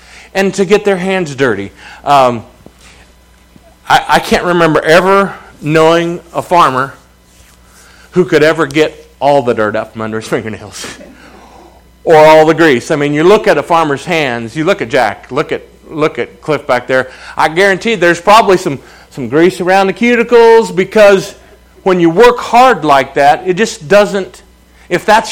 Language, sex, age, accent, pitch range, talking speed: English, male, 40-59, American, 125-205 Hz, 170 wpm